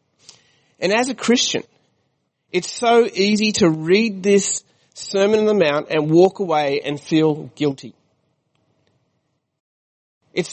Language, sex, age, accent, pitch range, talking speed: English, male, 30-49, Australian, 145-185 Hz, 120 wpm